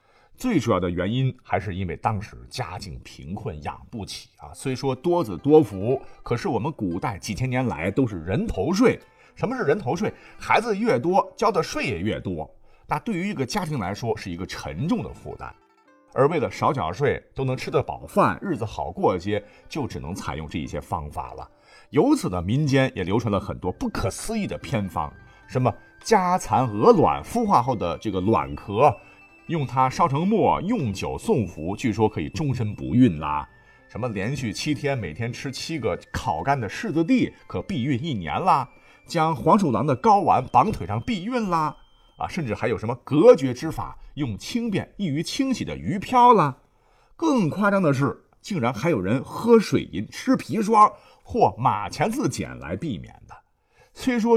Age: 50-69